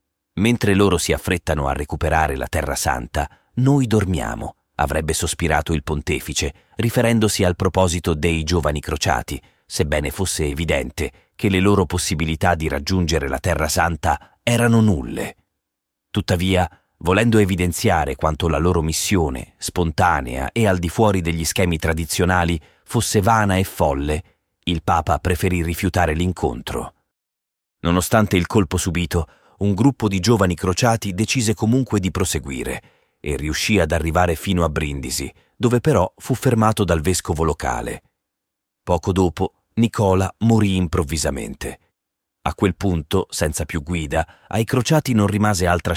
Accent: native